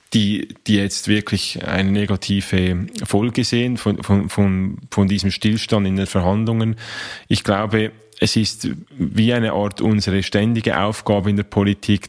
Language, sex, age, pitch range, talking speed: German, male, 20-39, 95-110 Hz, 150 wpm